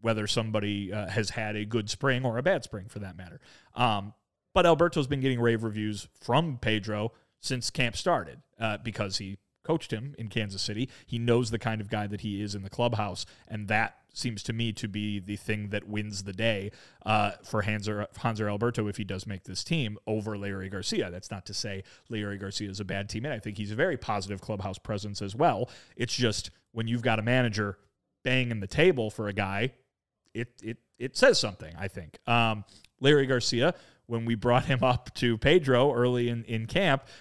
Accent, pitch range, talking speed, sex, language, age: American, 105-130 Hz, 205 wpm, male, English, 30-49